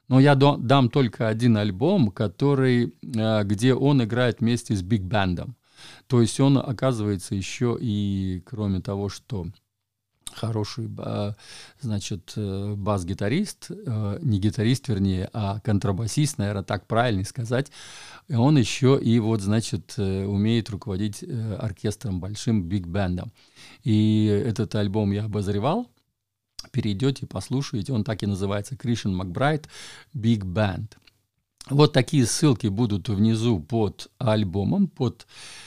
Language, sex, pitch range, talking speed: Russian, male, 105-135 Hz, 110 wpm